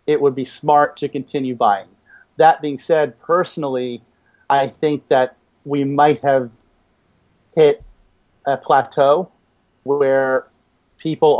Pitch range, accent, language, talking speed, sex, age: 125-145 Hz, American, English, 115 wpm, male, 40-59